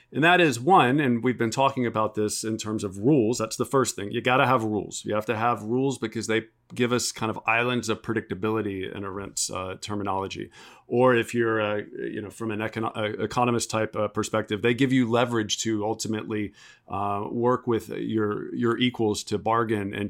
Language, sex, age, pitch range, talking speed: English, male, 40-59, 105-125 Hz, 210 wpm